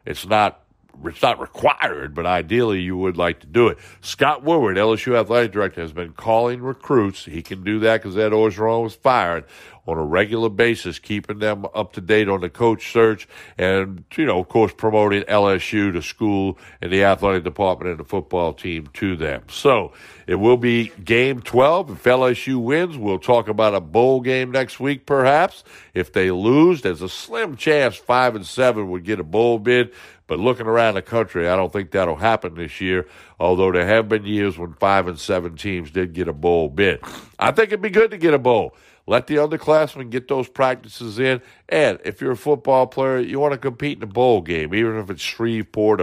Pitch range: 95-120 Hz